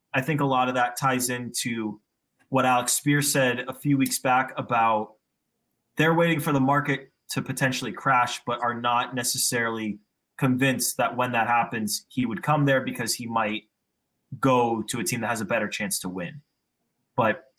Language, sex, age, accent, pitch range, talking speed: English, male, 20-39, American, 125-155 Hz, 180 wpm